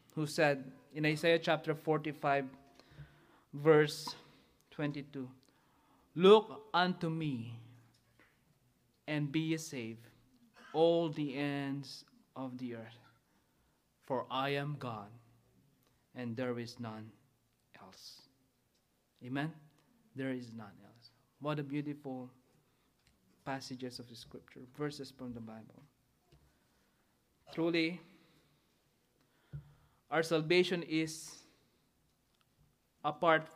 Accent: Filipino